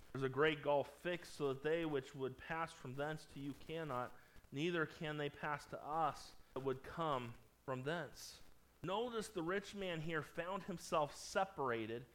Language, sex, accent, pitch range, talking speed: English, male, American, 155-210 Hz, 175 wpm